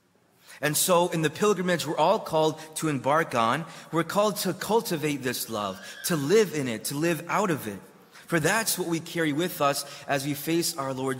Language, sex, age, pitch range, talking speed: English, male, 20-39, 135-170 Hz, 205 wpm